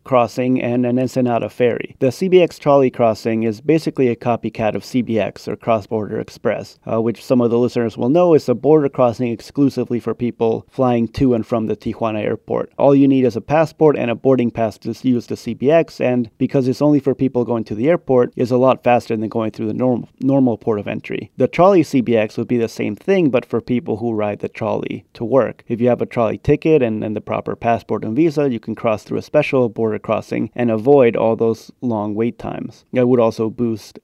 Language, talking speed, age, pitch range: English, 225 wpm, 30-49, 115-130 Hz